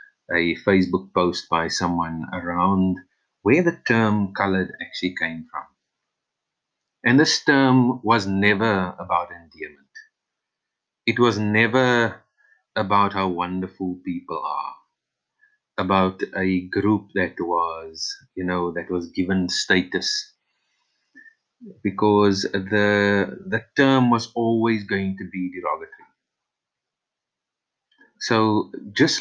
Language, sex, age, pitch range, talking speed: English, male, 30-49, 95-125 Hz, 105 wpm